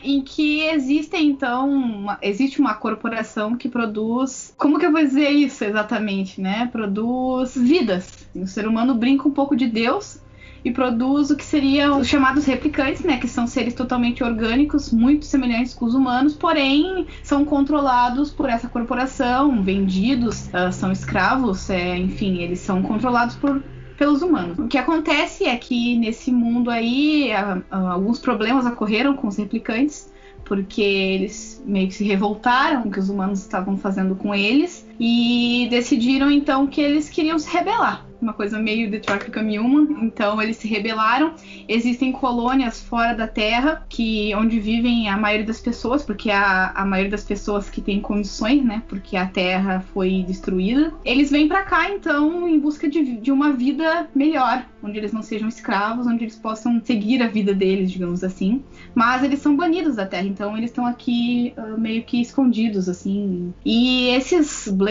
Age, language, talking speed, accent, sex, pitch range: 20-39, Portuguese, 165 wpm, Brazilian, female, 210-275 Hz